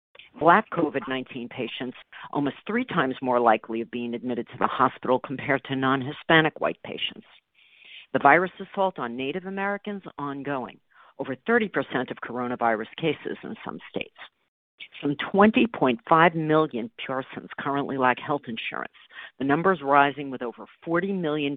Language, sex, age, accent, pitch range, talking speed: English, female, 50-69, American, 130-180 Hz, 135 wpm